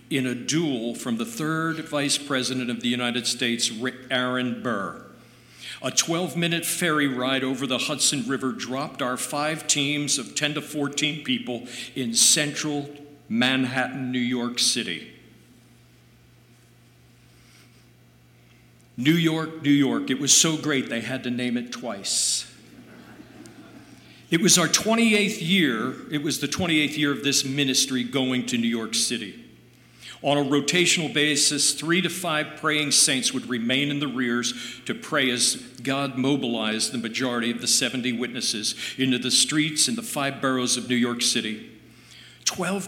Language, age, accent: English, 50-69, American